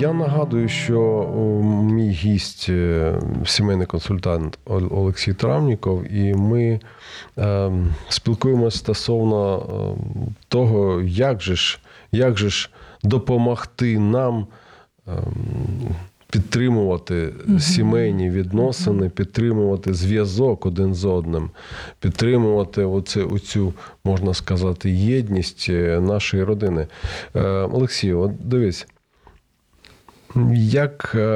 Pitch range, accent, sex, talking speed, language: 95-115 Hz, native, male, 80 wpm, Ukrainian